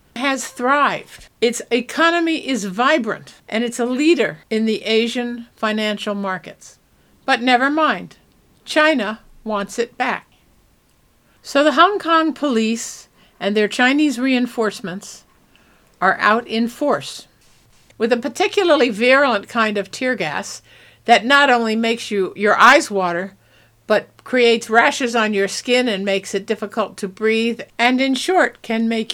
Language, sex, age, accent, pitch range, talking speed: English, female, 60-79, American, 205-265 Hz, 140 wpm